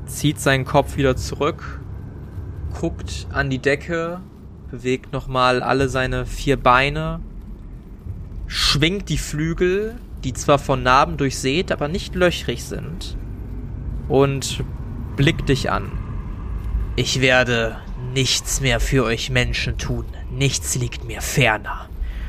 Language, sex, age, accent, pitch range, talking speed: German, male, 20-39, German, 95-155 Hz, 115 wpm